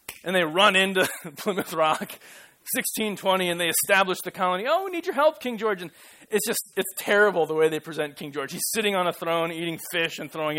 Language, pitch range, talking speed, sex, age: English, 160-210 Hz, 220 wpm, male, 20-39